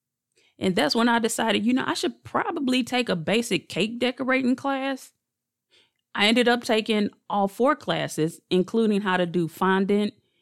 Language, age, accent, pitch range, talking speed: English, 30-49, American, 170-215 Hz, 160 wpm